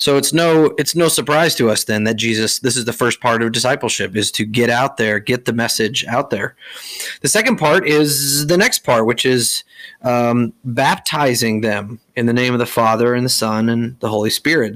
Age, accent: 30-49, American